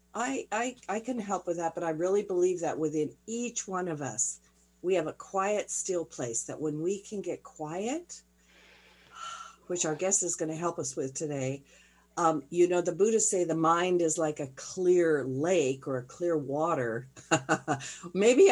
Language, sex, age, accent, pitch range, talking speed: English, female, 50-69, American, 135-185 Hz, 185 wpm